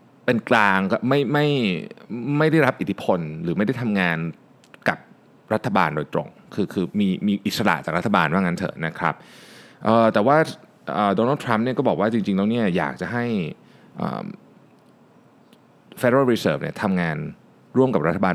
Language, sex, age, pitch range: Thai, male, 20-39, 100-150 Hz